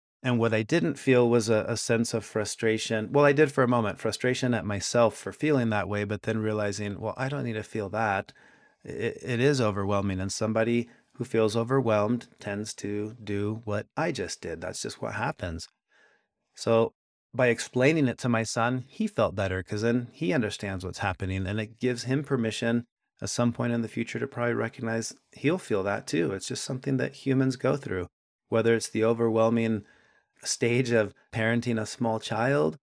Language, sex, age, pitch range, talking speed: English, male, 30-49, 105-130 Hz, 190 wpm